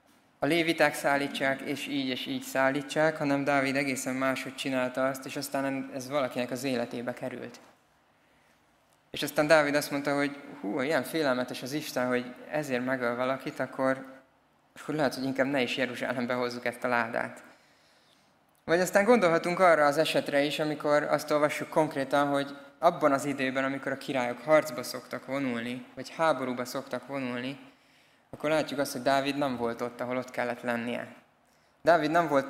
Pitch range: 125-145 Hz